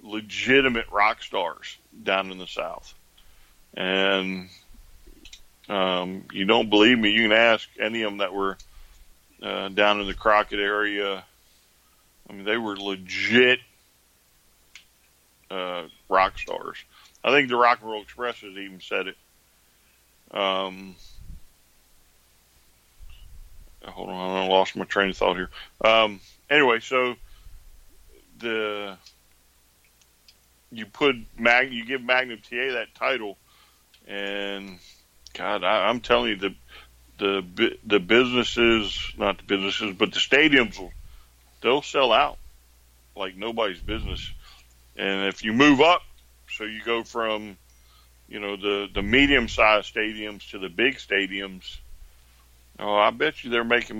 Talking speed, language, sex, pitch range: 130 wpm, English, male, 75-110 Hz